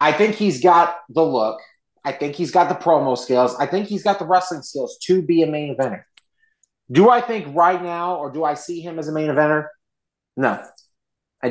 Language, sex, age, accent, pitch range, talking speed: English, male, 30-49, American, 150-195 Hz, 215 wpm